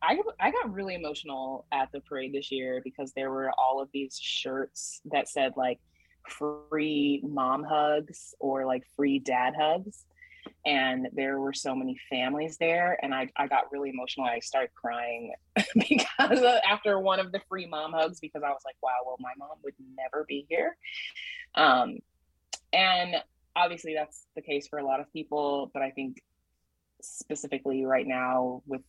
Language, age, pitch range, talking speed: English, 20-39, 130-160 Hz, 170 wpm